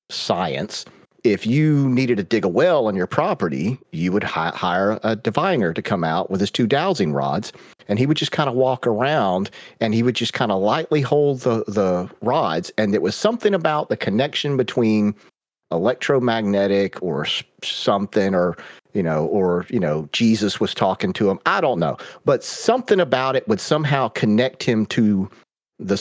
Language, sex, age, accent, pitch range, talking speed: English, male, 40-59, American, 100-130 Hz, 180 wpm